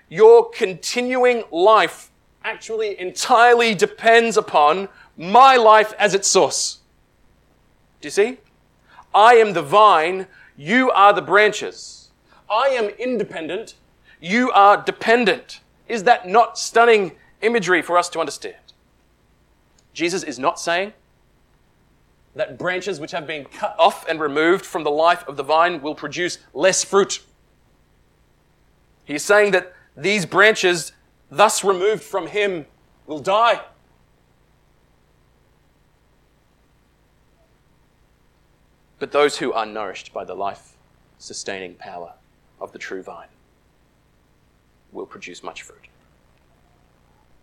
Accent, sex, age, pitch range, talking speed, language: Australian, male, 30-49, 155-230 Hz, 115 wpm, English